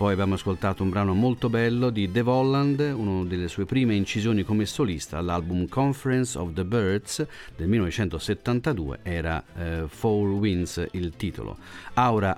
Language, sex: Italian, male